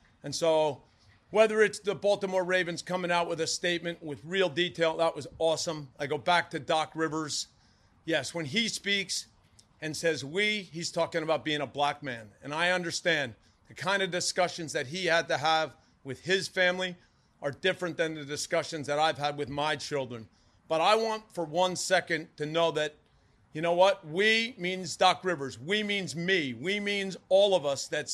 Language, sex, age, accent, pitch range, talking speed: English, male, 40-59, American, 150-190 Hz, 190 wpm